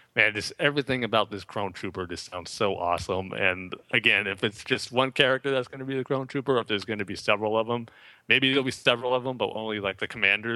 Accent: American